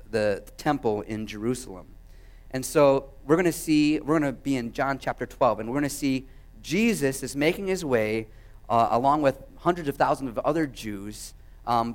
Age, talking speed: 30-49, 190 wpm